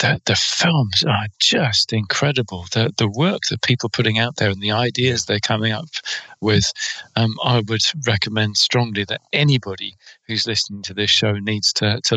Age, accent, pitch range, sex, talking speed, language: 40-59, British, 105-120 Hz, male, 180 wpm, English